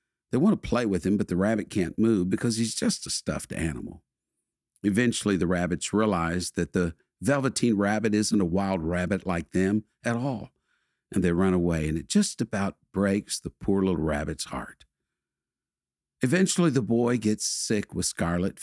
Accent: American